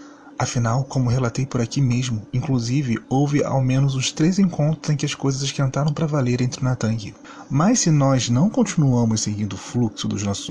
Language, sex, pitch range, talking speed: Portuguese, male, 115-145 Hz, 185 wpm